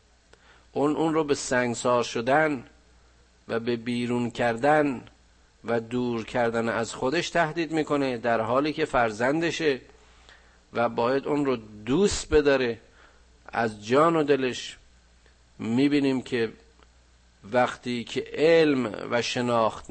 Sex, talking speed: male, 115 wpm